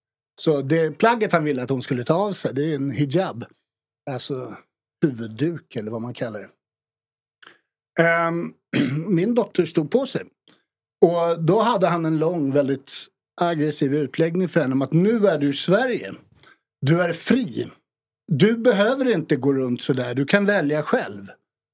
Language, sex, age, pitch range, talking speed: English, male, 60-79, 140-185 Hz, 165 wpm